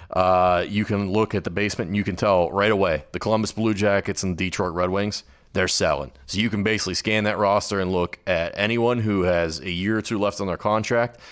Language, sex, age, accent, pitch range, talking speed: English, male, 30-49, American, 85-100 Hz, 235 wpm